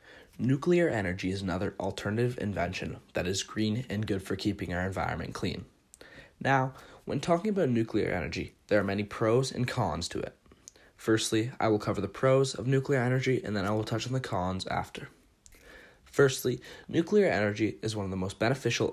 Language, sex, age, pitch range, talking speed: English, male, 20-39, 95-125 Hz, 180 wpm